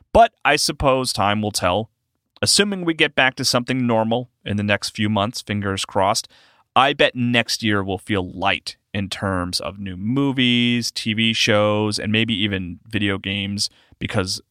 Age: 30-49